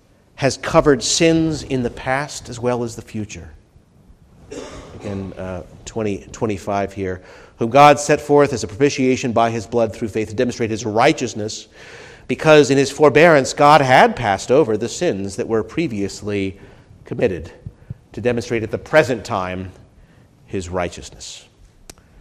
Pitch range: 100-130 Hz